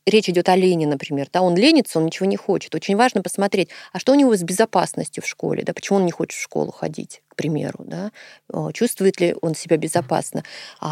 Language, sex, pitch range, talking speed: Russian, female, 170-225 Hz, 200 wpm